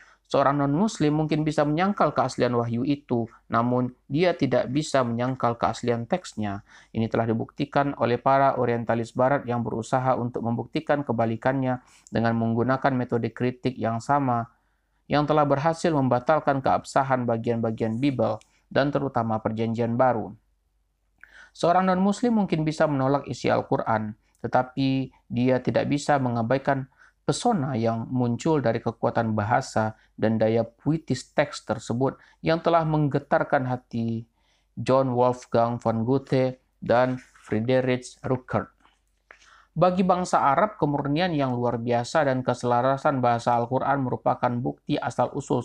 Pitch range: 115-140 Hz